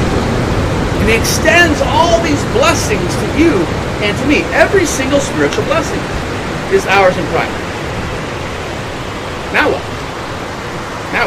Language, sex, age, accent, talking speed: English, male, 40-59, American, 110 wpm